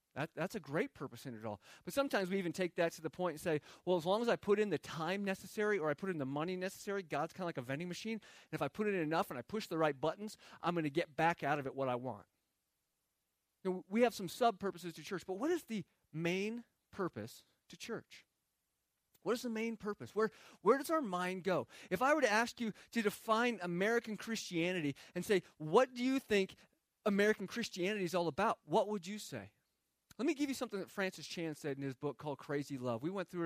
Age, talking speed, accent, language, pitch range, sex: 40-59, 240 wpm, American, English, 155-210 Hz, male